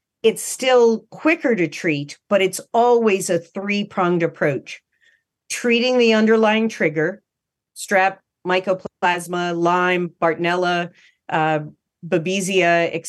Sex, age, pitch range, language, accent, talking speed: female, 40-59, 170-220 Hz, English, American, 100 wpm